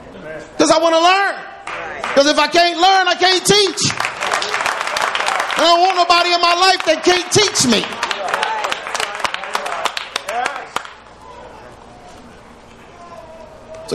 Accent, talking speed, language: American, 110 wpm, English